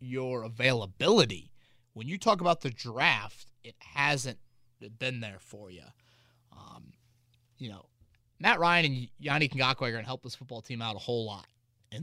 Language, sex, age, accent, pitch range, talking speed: English, male, 30-49, American, 115-135 Hz, 155 wpm